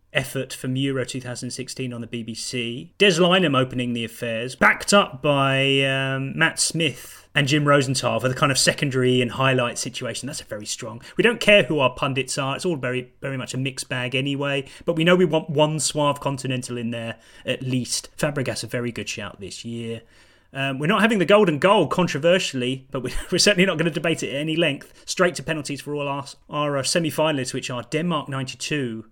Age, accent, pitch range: 30-49, British, 125-180 Hz